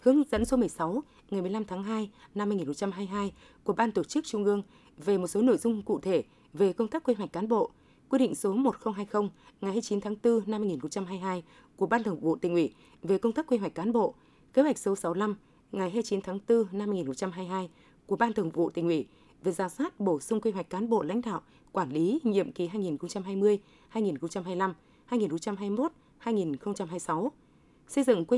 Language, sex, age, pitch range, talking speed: Vietnamese, female, 20-39, 185-230 Hz, 190 wpm